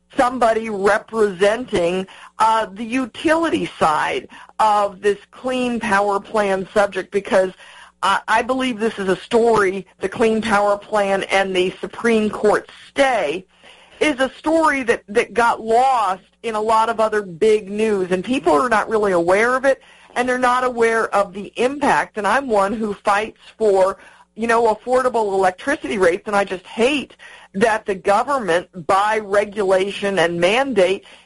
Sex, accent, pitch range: female, American, 195-235 Hz